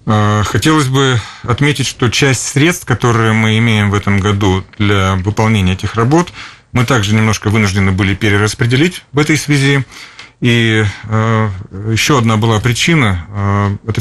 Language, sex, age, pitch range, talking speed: Russian, male, 40-59, 100-115 Hz, 135 wpm